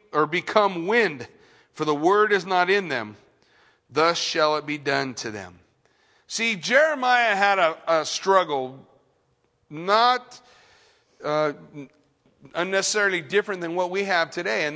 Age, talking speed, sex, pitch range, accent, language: 40-59, 135 wpm, male, 165-240 Hz, American, English